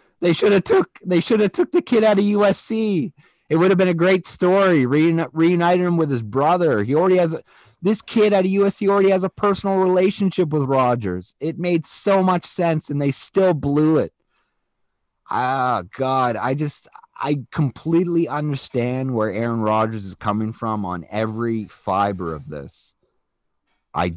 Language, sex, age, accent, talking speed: English, male, 30-49, American, 175 wpm